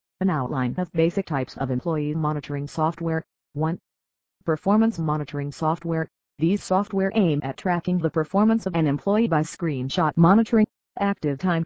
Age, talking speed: 40-59, 145 wpm